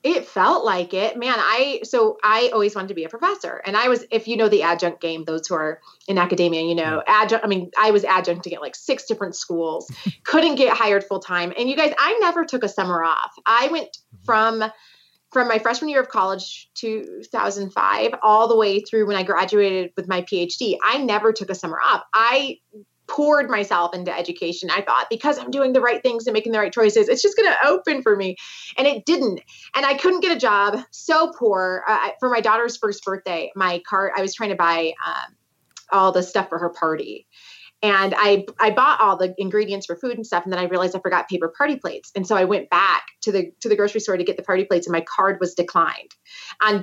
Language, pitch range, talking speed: English, 180-235 Hz, 230 wpm